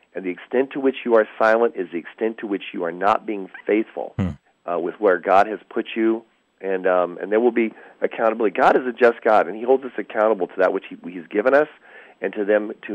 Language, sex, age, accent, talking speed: English, male, 40-59, American, 245 wpm